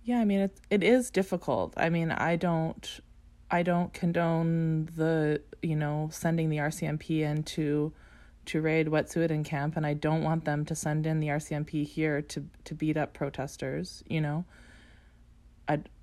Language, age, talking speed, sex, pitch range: English, 20-39, 170 wpm, female, 145-165 Hz